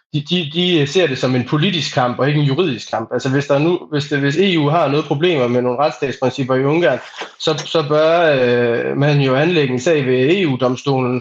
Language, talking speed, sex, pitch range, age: Danish, 215 wpm, male, 125-150 Hz, 20-39